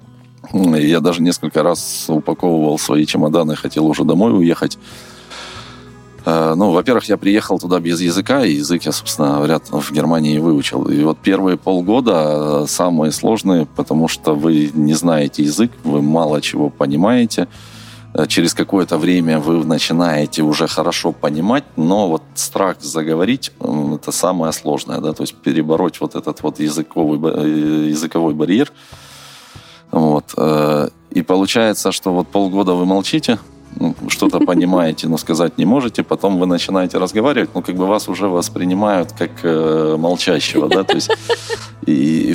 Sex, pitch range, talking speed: male, 75-90 Hz, 135 wpm